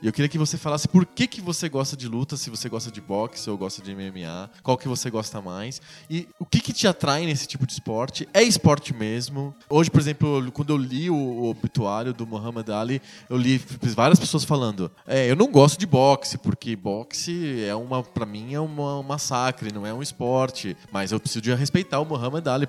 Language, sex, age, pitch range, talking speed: Portuguese, male, 20-39, 110-155 Hz, 220 wpm